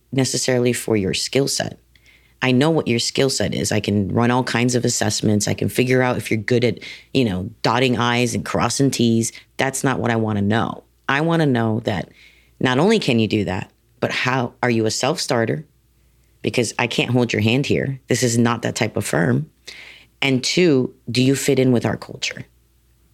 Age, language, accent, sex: 40-59, English, American, female